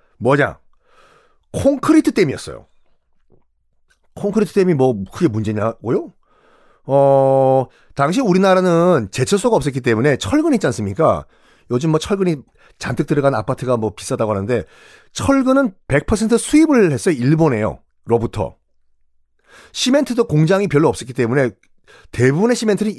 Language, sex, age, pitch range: Korean, male, 30-49, 125-205 Hz